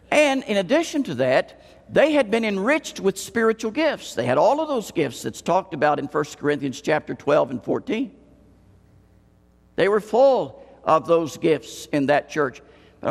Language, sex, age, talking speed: English, male, 60-79, 175 wpm